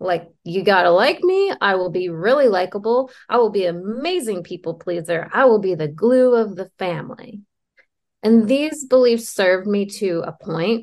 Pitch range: 170-215 Hz